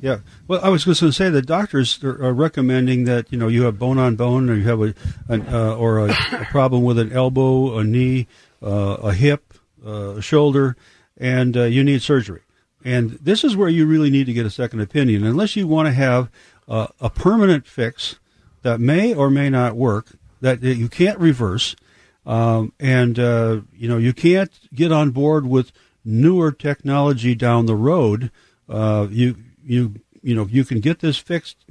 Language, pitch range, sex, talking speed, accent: English, 115-140 Hz, male, 195 wpm, American